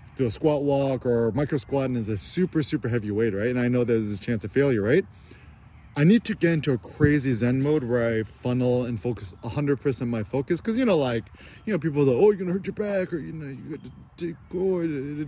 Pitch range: 115-150 Hz